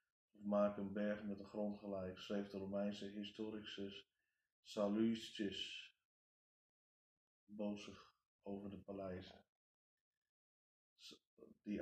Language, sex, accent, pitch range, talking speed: Dutch, male, Dutch, 100-110 Hz, 90 wpm